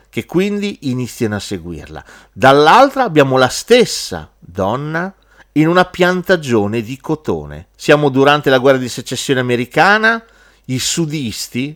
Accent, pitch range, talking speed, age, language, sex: native, 120-180 Hz, 120 wpm, 40-59, Italian, male